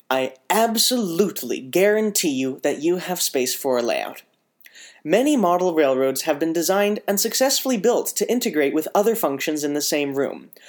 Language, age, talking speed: English, 30-49, 165 wpm